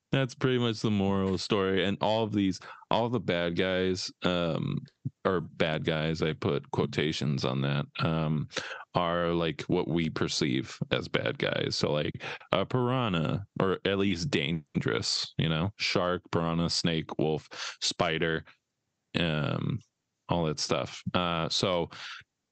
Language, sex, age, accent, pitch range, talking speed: English, male, 20-39, American, 80-90 Hz, 140 wpm